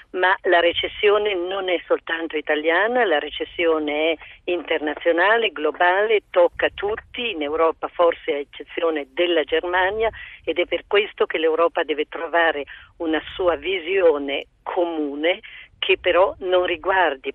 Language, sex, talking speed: Italian, female, 130 wpm